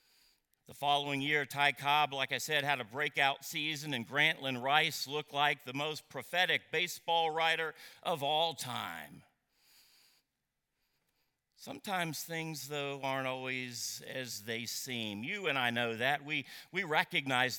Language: English